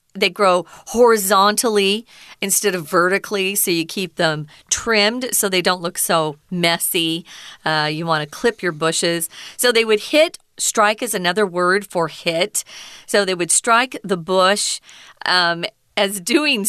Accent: American